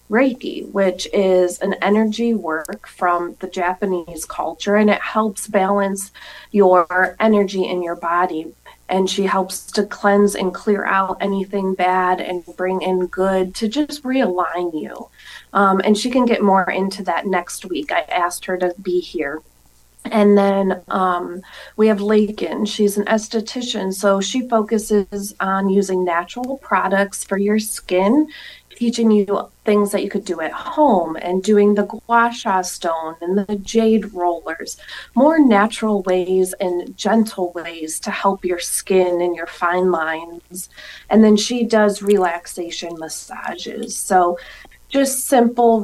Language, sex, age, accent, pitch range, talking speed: English, female, 30-49, American, 180-215 Hz, 150 wpm